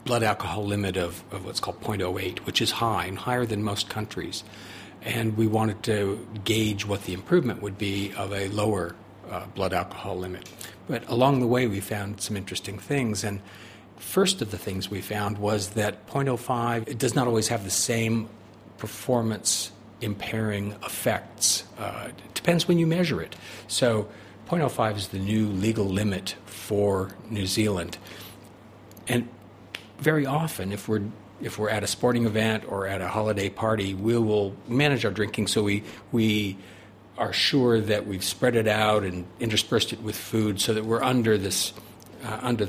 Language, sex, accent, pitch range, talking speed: English, male, American, 100-115 Hz, 170 wpm